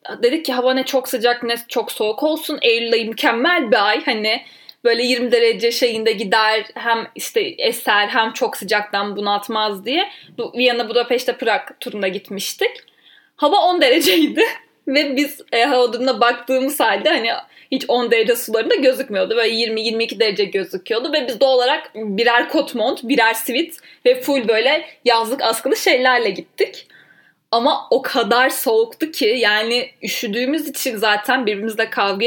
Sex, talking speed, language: female, 145 wpm, Turkish